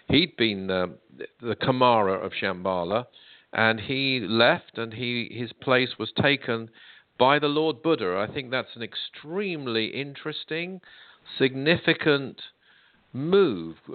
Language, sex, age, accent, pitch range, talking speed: English, male, 50-69, British, 115-140 Hz, 120 wpm